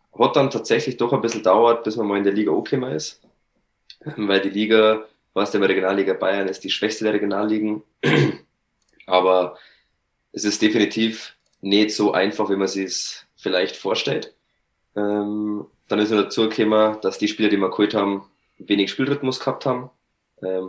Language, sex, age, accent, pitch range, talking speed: German, male, 20-39, German, 95-110 Hz, 160 wpm